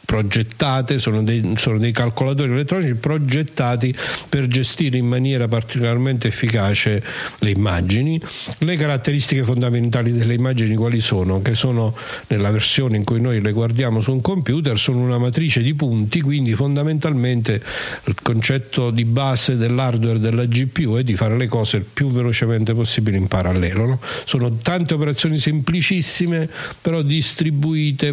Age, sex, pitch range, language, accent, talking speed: 50-69, male, 115-150 Hz, Italian, native, 140 wpm